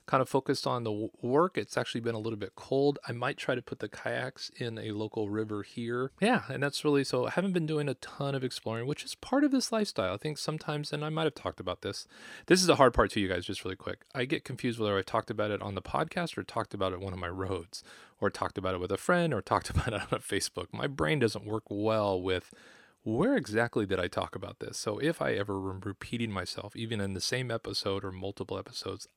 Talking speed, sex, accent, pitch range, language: 260 wpm, male, American, 100-120 Hz, English